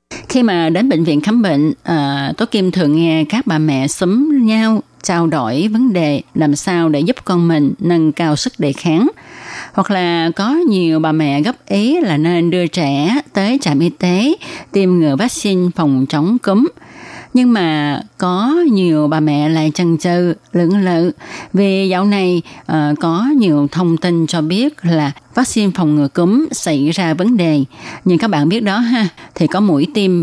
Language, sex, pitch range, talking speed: Vietnamese, female, 155-200 Hz, 185 wpm